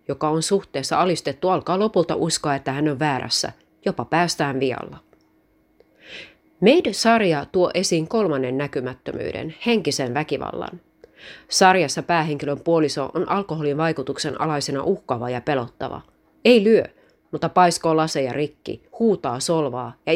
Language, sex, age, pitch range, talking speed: Finnish, female, 30-49, 140-180 Hz, 120 wpm